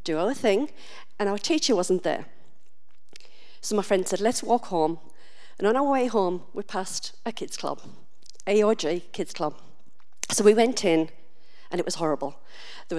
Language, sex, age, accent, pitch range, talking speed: English, female, 50-69, British, 180-245 Hz, 170 wpm